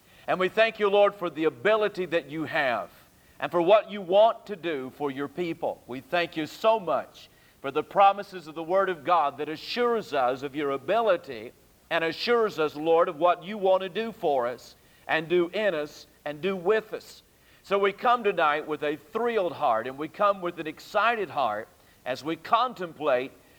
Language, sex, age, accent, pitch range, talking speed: English, male, 60-79, American, 145-190 Hz, 200 wpm